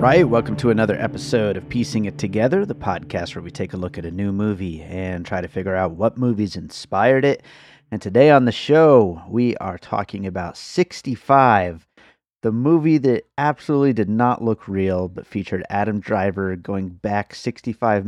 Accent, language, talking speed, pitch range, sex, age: American, English, 185 wpm, 90-115 Hz, male, 30-49